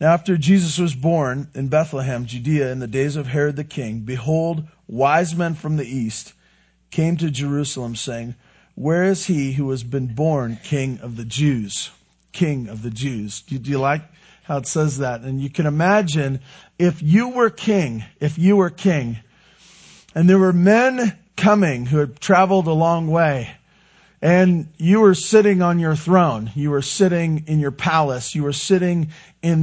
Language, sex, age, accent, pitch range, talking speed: English, male, 40-59, American, 135-180 Hz, 175 wpm